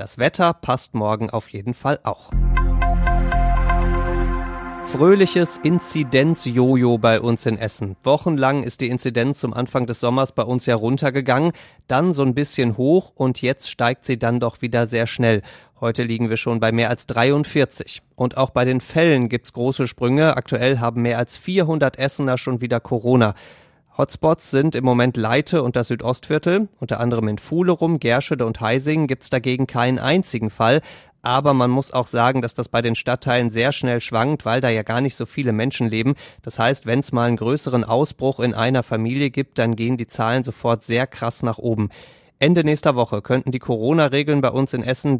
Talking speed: 185 wpm